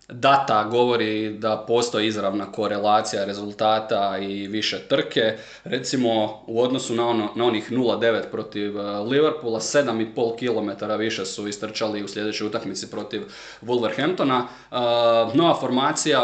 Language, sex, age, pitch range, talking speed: Croatian, male, 20-39, 105-120 Hz, 125 wpm